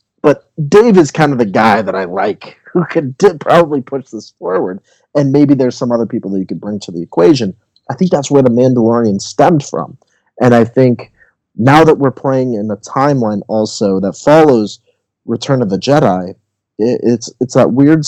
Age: 30-49